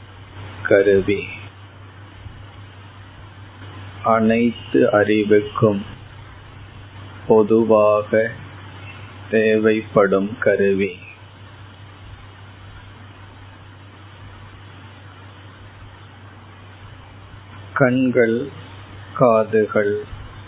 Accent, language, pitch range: native, Tamil, 100-105 Hz